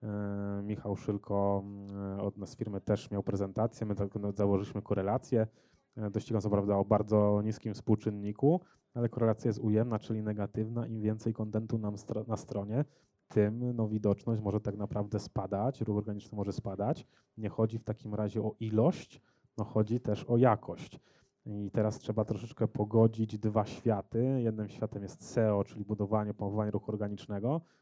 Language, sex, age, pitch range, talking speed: Polish, male, 20-39, 105-115 Hz, 150 wpm